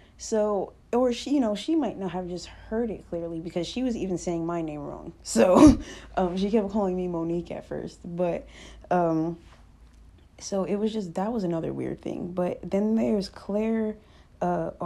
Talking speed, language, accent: 185 wpm, English, American